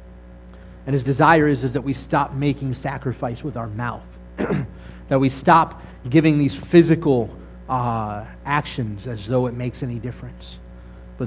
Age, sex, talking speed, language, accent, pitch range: 30-49, male, 150 wpm, English, American, 105-130 Hz